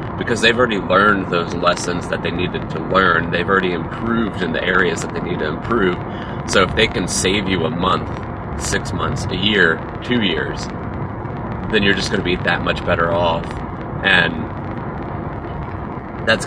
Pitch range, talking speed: 85-100 Hz, 175 wpm